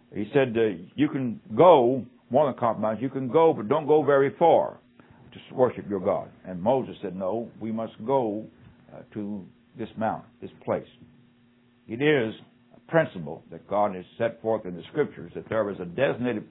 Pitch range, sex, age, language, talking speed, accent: 110-135 Hz, male, 60-79, English, 185 wpm, American